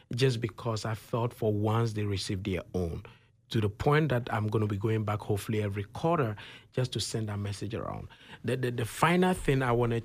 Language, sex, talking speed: English, male, 215 wpm